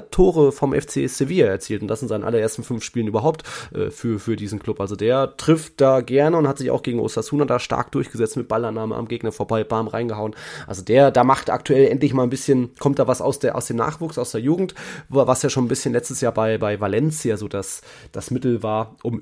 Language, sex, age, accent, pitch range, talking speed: German, male, 20-39, German, 110-140 Hz, 235 wpm